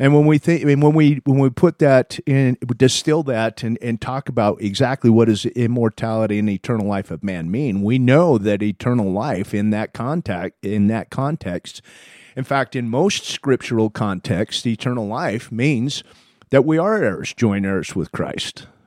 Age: 40-59